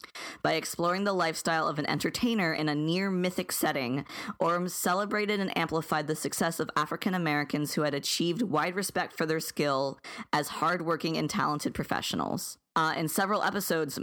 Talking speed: 165 wpm